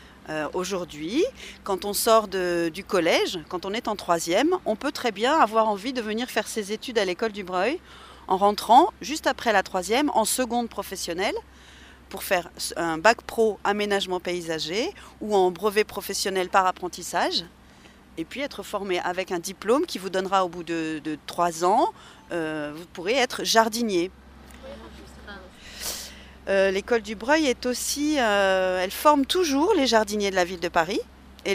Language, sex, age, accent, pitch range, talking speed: French, female, 30-49, French, 175-245 Hz, 165 wpm